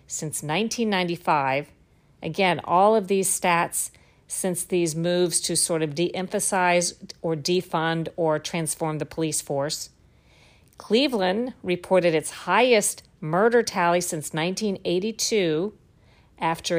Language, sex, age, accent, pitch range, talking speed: English, female, 50-69, American, 155-185 Hz, 110 wpm